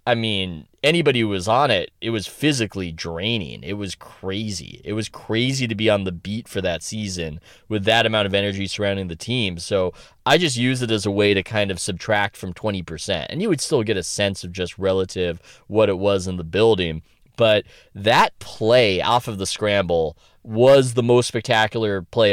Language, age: English, 20-39